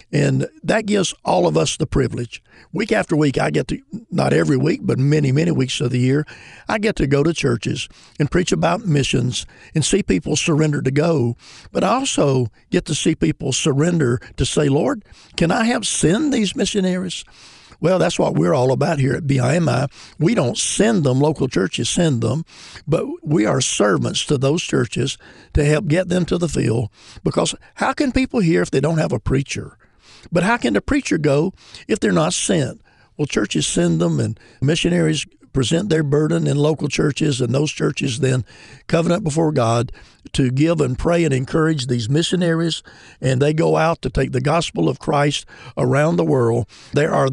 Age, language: 60-79, English